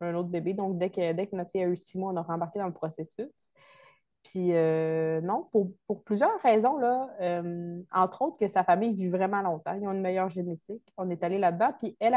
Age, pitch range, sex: 20-39, 180-225 Hz, female